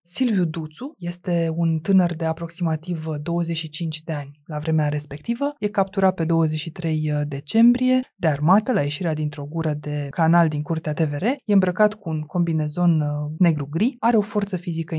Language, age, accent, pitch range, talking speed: Romanian, 20-39, native, 155-200 Hz, 155 wpm